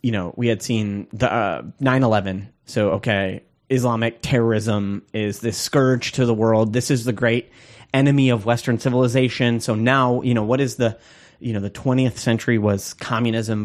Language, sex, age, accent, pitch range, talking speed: English, male, 30-49, American, 105-130 Hz, 175 wpm